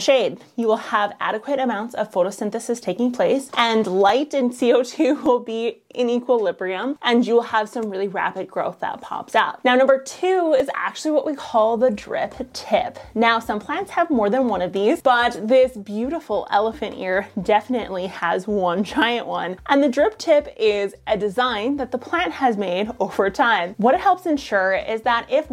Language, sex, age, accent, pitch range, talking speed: English, female, 20-39, American, 205-270 Hz, 190 wpm